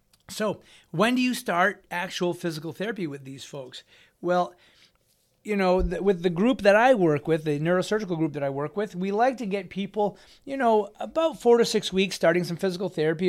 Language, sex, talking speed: English, male, 200 wpm